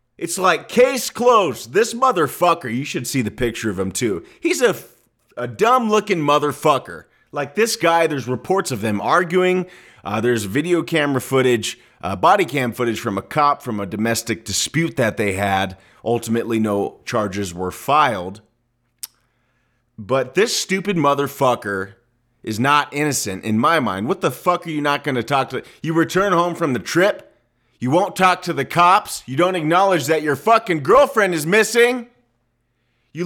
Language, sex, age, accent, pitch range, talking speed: English, male, 30-49, American, 115-175 Hz, 170 wpm